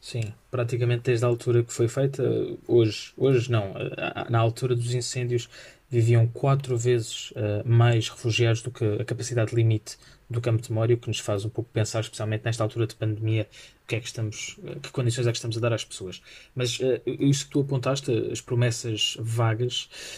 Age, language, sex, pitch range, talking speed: 20-39, Portuguese, male, 115-125 Hz, 175 wpm